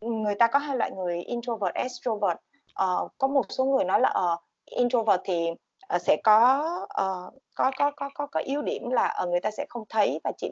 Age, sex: 20-39, female